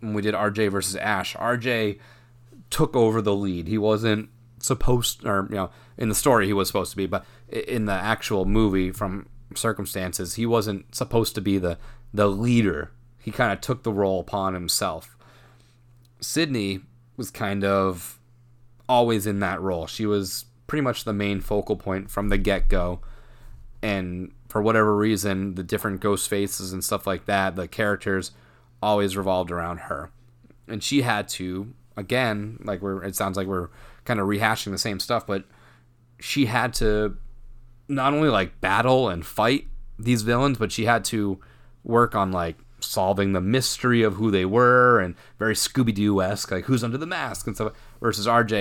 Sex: male